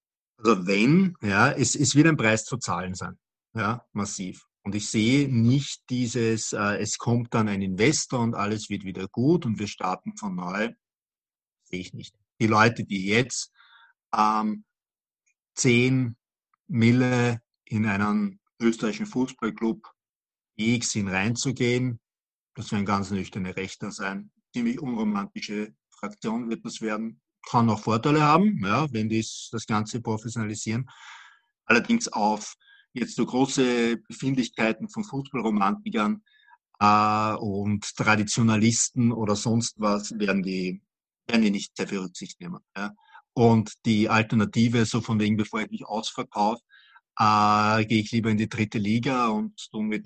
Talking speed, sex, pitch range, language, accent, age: 140 wpm, male, 105-130 Hz, German, German, 50-69